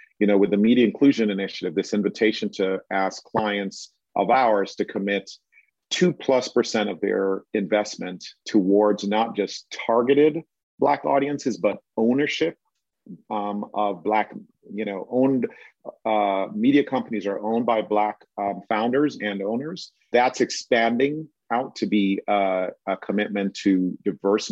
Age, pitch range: 40-59, 100-125 Hz